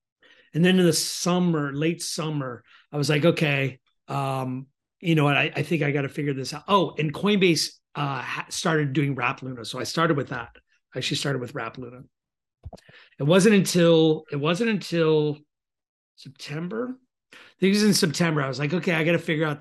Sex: male